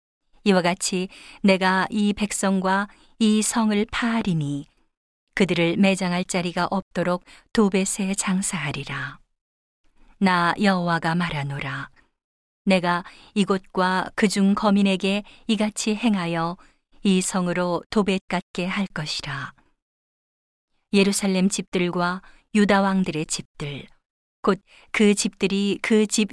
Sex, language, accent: female, Korean, native